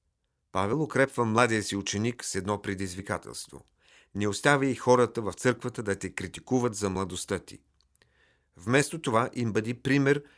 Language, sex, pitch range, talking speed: Bulgarian, male, 100-130 Hz, 145 wpm